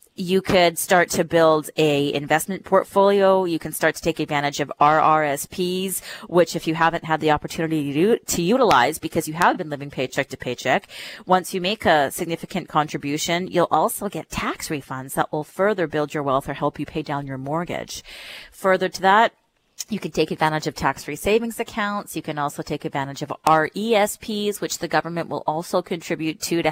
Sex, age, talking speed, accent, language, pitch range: female, 30-49, 190 wpm, American, English, 145-185 Hz